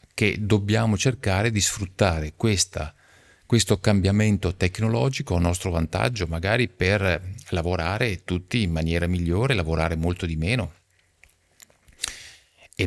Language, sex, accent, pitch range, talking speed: Italian, male, native, 80-105 Hz, 105 wpm